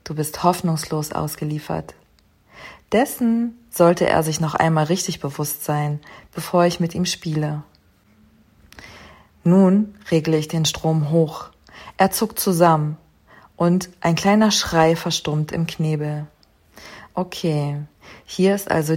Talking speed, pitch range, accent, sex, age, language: 120 wpm, 150-175 Hz, German, female, 40-59, German